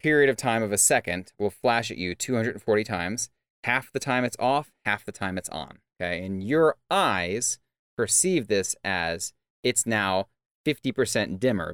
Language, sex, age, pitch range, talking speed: English, male, 30-49, 95-125 Hz, 175 wpm